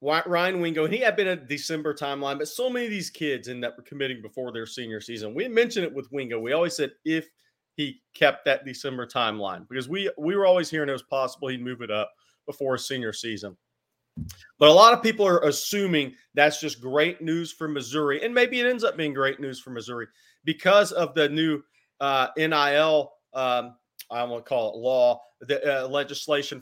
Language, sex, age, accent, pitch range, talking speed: English, male, 30-49, American, 130-160 Hz, 205 wpm